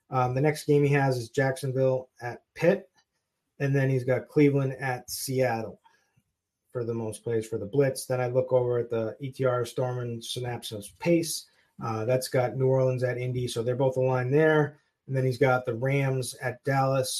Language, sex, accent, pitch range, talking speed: English, male, American, 120-140 Hz, 190 wpm